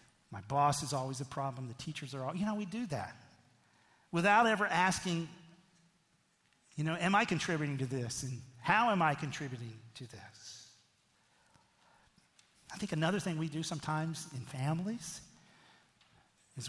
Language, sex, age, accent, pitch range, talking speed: English, male, 40-59, American, 135-175 Hz, 150 wpm